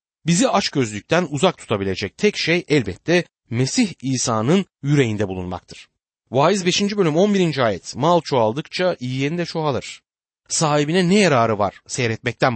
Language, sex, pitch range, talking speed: Turkish, male, 115-185 Hz, 130 wpm